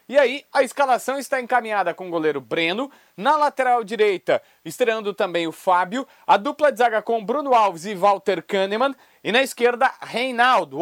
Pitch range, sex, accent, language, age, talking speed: 210-260 Hz, male, Brazilian, Portuguese, 30-49, 170 wpm